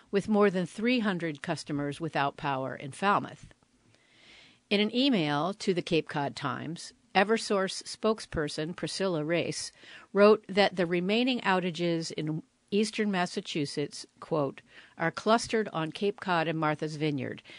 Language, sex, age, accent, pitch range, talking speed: English, female, 50-69, American, 150-205 Hz, 130 wpm